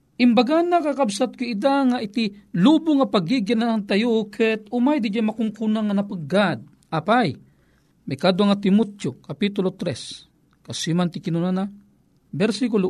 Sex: male